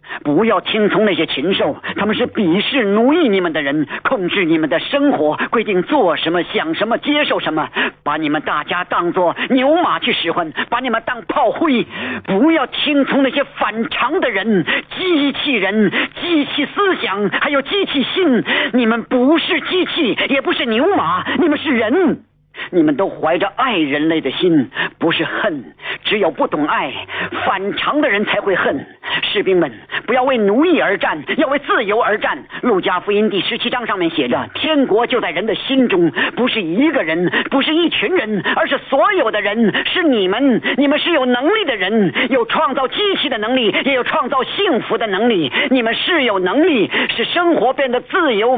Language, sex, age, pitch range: Chinese, male, 50-69, 215-315 Hz